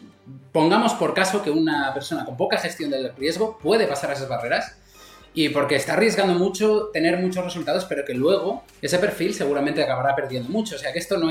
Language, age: English, 20-39